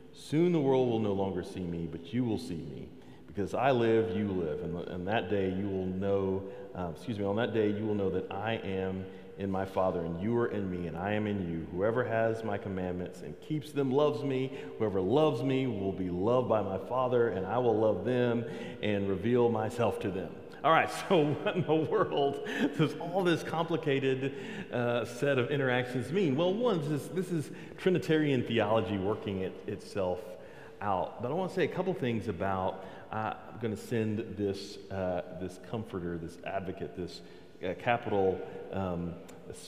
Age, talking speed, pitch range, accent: 40-59, 195 wpm, 95-140 Hz, American